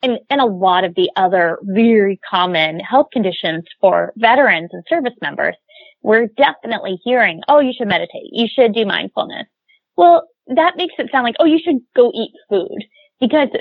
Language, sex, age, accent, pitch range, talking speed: English, female, 20-39, American, 205-290 Hz, 175 wpm